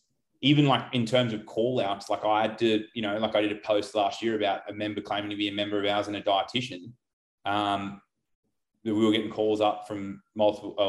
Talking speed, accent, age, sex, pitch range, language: 225 wpm, Australian, 20-39, male, 100-110 Hz, English